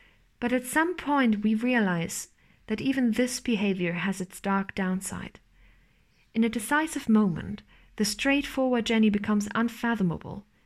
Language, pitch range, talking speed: English, 195-250 Hz, 130 wpm